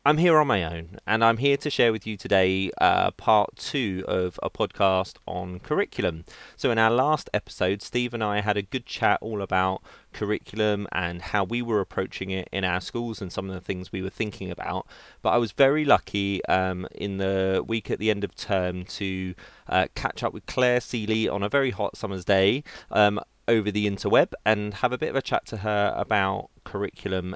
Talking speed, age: 210 wpm, 30-49